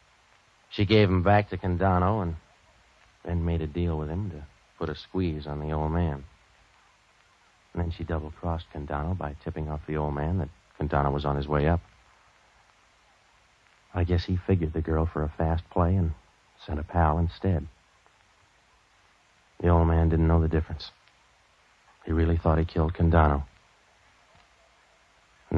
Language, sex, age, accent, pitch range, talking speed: English, male, 50-69, American, 75-90 Hz, 160 wpm